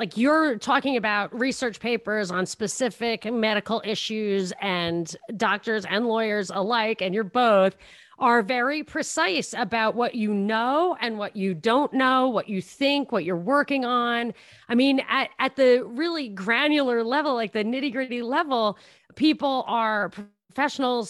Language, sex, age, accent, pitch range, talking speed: English, female, 30-49, American, 220-280 Hz, 150 wpm